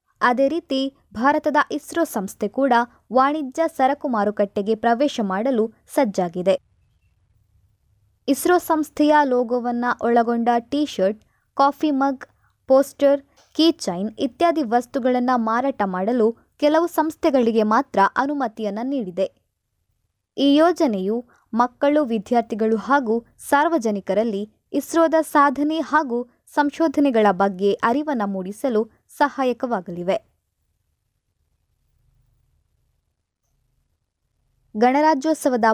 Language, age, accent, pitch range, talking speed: Kannada, 20-39, native, 210-285 Hz, 75 wpm